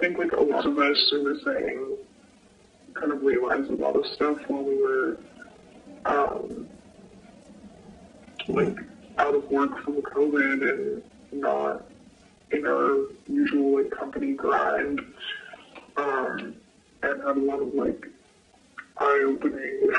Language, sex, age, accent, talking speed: English, male, 40-59, American, 130 wpm